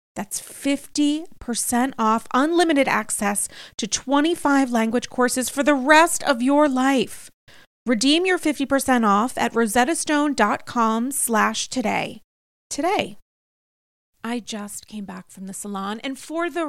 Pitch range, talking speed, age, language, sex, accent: 210-280 Hz, 120 wpm, 30-49, English, female, American